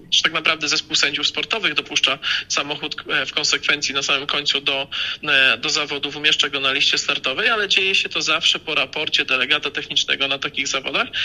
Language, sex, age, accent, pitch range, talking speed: Polish, male, 40-59, native, 140-165 Hz, 170 wpm